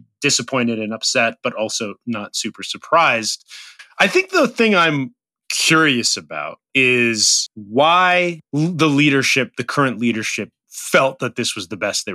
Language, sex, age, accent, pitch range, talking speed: English, male, 30-49, American, 115-155 Hz, 145 wpm